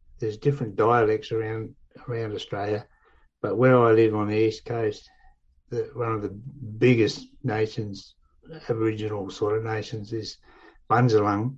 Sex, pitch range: male, 105-130 Hz